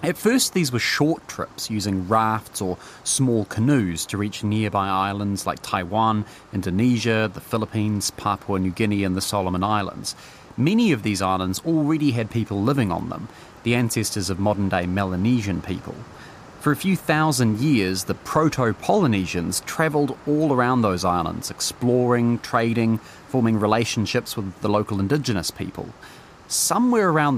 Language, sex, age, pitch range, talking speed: English, male, 30-49, 100-140 Hz, 145 wpm